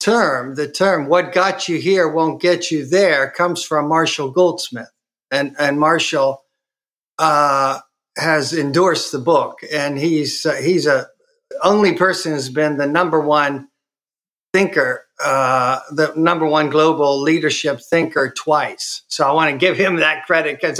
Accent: American